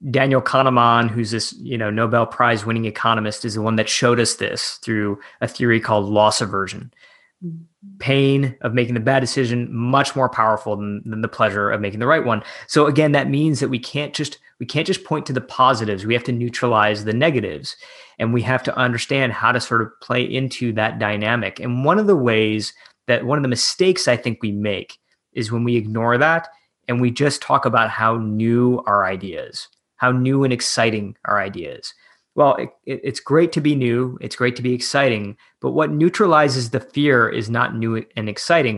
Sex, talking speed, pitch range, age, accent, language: male, 205 wpm, 115-135 Hz, 20-39, American, English